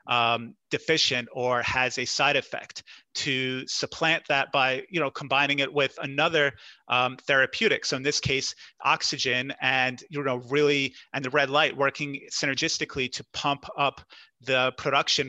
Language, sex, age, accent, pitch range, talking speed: English, male, 30-49, American, 125-145 Hz, 155 wpm